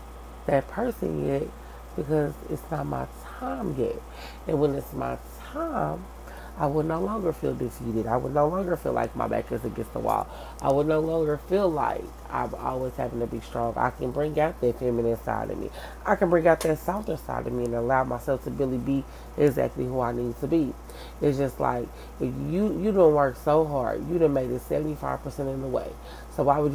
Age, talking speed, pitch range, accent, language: 30-49, 215 wpm, 120-155 Hz, American, English